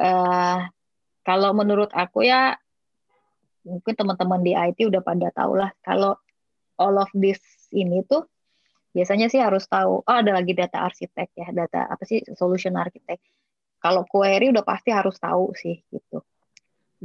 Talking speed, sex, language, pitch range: 150 wpm, female, Indonesian, 180-225 Hz